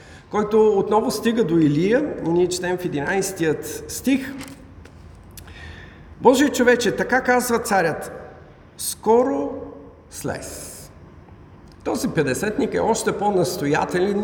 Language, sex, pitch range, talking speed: Bulgarian, male, 140-215 Hz, 95 wpm